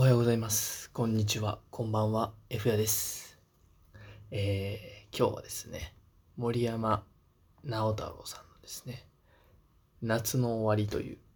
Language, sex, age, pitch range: Japanese, male, 20-39, 95-110 Hz